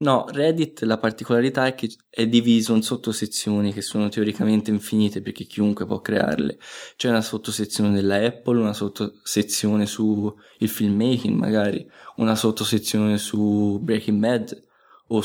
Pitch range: 105-120 Hz